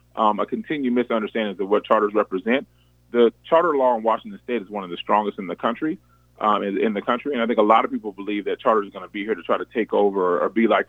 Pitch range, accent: 100-125 Hz, American